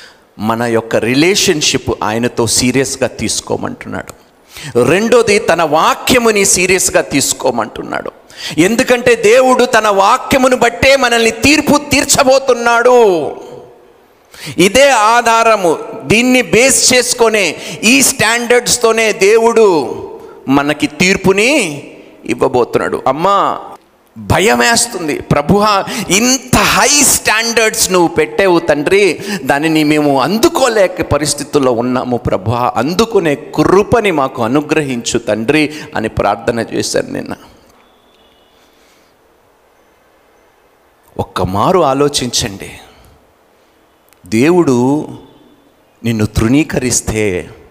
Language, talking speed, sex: Telugu, 75 wpm, male